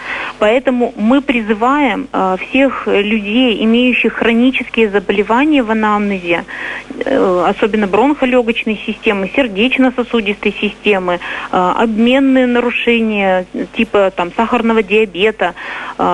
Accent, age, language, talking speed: native, 30-49, Russian, 80 wpm